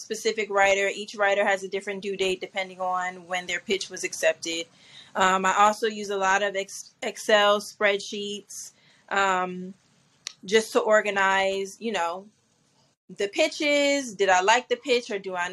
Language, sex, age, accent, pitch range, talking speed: English, female, 20-39, American, 185-210 Hz, 160 wpm